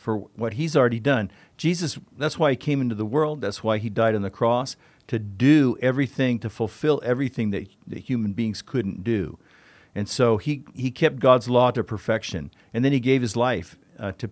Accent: American